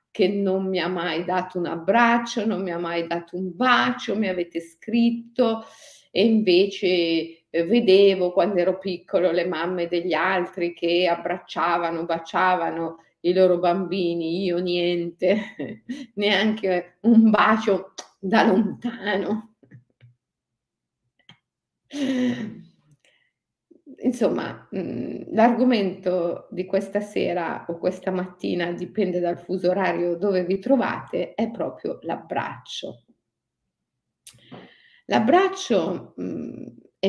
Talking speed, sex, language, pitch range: 100 wpm, female, Italian, 175-225 Hz